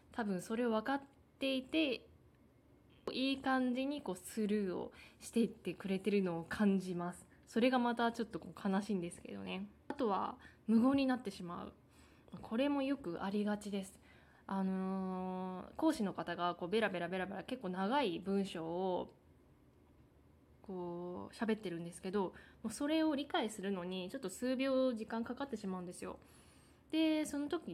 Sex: female